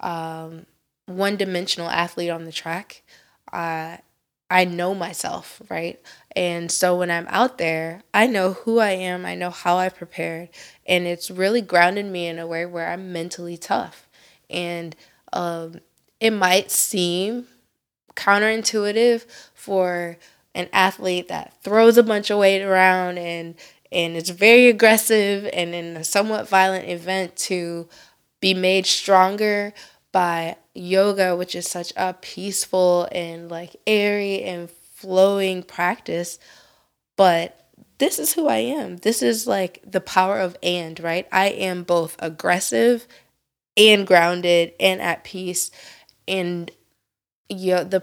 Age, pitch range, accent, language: 20-39, 170-195 Hz, American, English